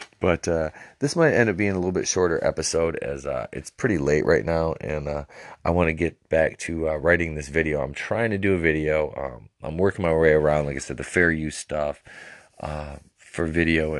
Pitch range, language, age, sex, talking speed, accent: 70-90 Hz, English, 30-49, male, 225 wpm, American